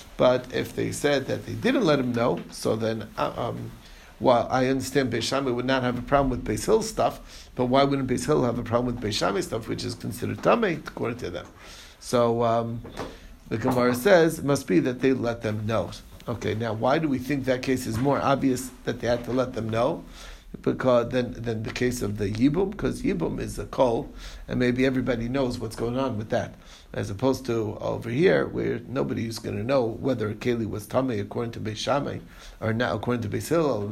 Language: English